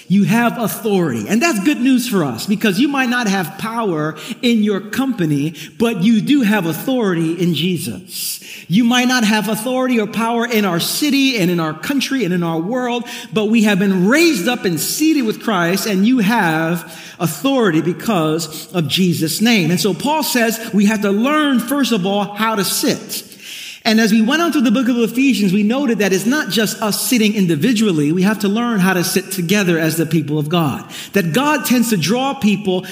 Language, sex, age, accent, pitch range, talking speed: English, male, 50-69, American, 180-245 Hz, 205 wpm